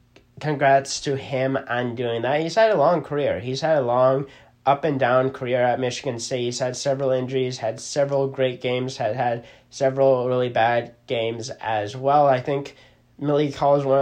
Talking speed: 190 wpm